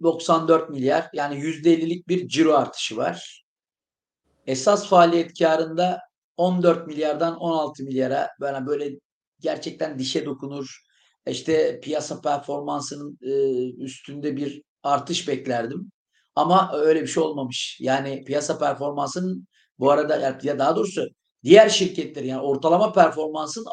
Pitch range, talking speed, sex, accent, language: 145-200 Hz, 120 wpm, male, native, Turkish